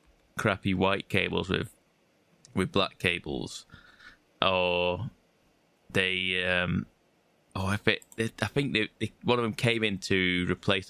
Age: 20-39